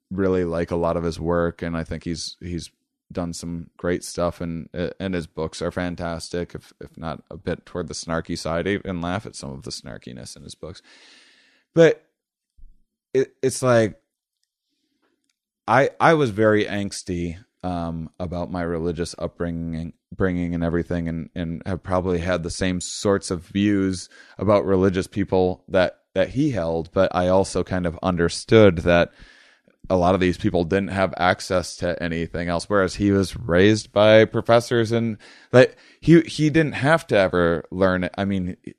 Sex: male